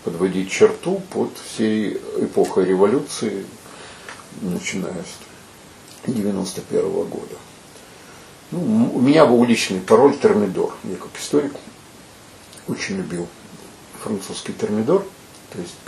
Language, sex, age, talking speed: Russian, male, 60-79, 100 wpm